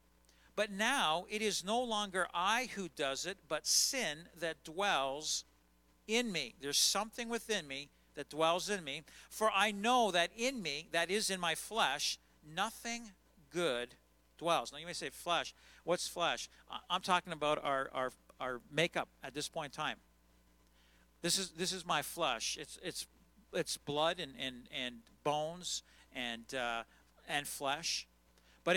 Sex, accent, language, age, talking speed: male, American, English, 50-69, 160 wpm